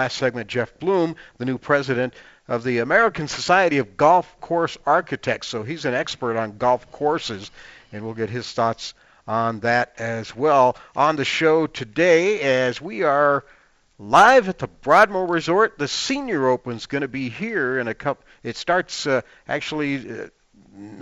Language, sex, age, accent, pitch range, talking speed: English, male, 50-69, American, 120-165 Hz, 165 wpm